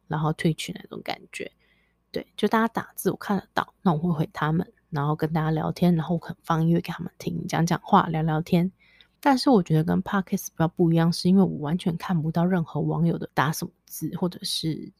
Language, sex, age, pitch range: Chinese, female, 20-39, 160-190 Hz